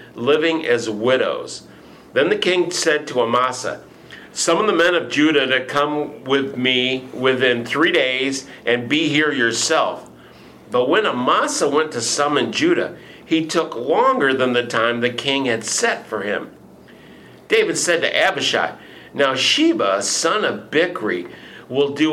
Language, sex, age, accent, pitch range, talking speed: English, male, 50-69, American, 120-150 Hz, 150 wpm